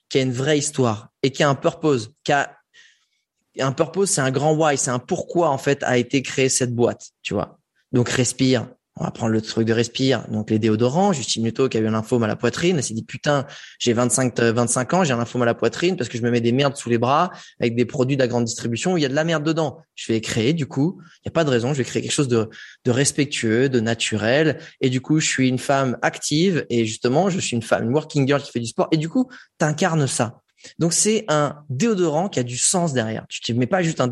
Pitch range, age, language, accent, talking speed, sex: 125-160 Hz, 20-39, French, French, 275 wpm, male